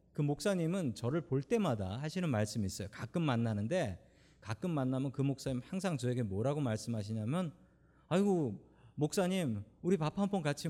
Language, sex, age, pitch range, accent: Korean, male, 40-59, 115-170 Hz, native